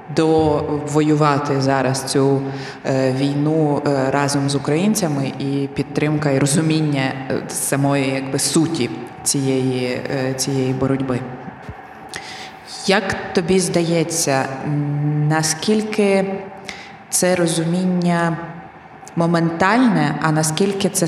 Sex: female